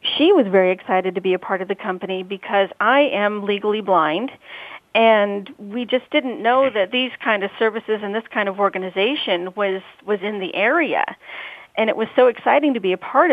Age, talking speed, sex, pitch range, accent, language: 40-59, 205 wpm, female, 190-220 Hz, American, English